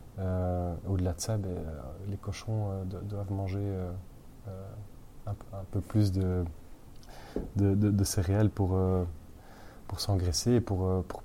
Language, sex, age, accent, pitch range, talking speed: French, male, 20-39, French, 95-105 Hz, 175 wpm